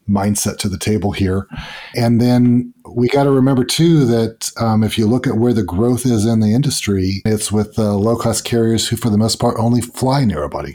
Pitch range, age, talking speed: 100-120 Hz, 40-59, 220 wpm